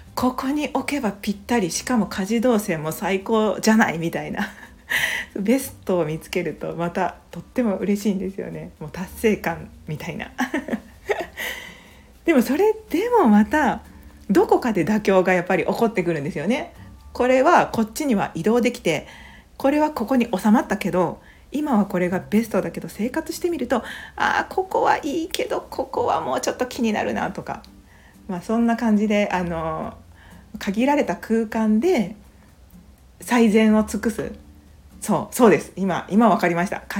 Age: 40-59